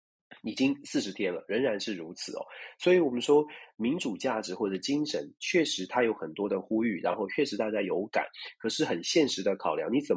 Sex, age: male, 30-49